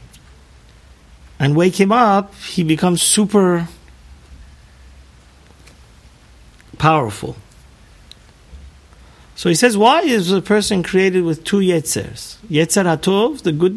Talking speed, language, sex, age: 100 wpm, English, male, 50-69